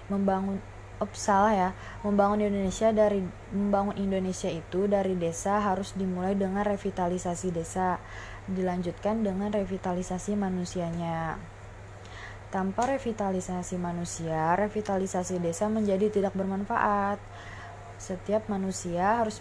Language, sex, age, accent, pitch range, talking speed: Indonesian, female, 20-39, native, 175-205 Hz, 100 wpm